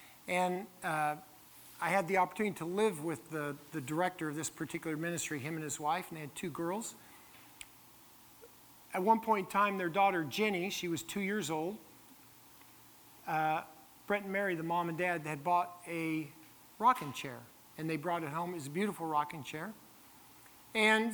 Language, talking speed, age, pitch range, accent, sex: English, 180 wpm, 50-69, 155-180 Hz, American, male